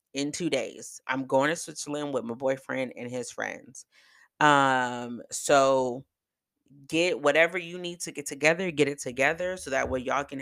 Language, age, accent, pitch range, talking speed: English, 30-49, American, 115-140 Hz, 175 wpm